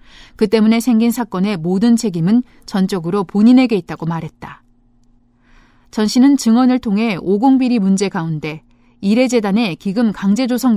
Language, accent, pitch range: Korean, native, 165-235 Hz